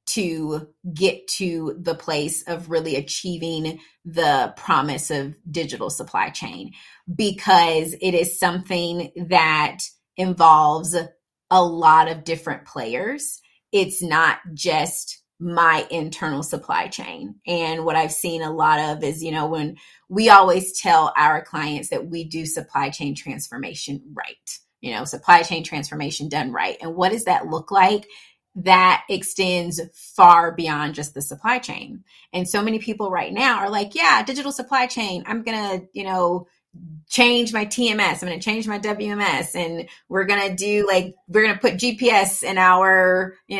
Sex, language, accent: female, English, American